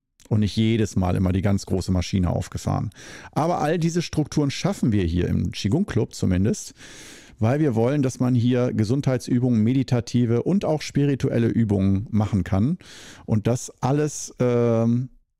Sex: male